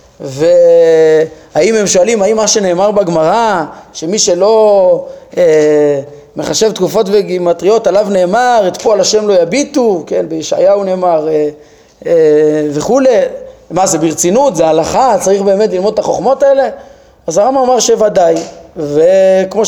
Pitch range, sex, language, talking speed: 165-240 Hz, male, Hebrew, 130 wpm